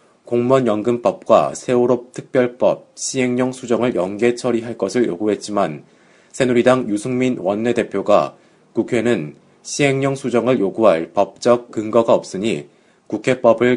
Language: Korean